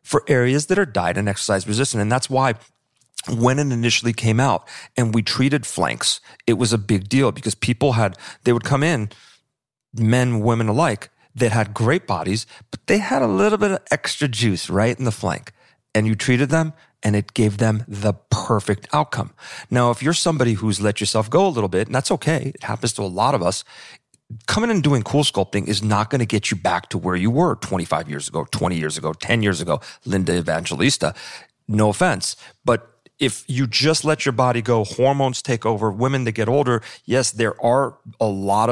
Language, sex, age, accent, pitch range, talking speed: English, male, 40-59, American, 105-135 Hz, 210 wpm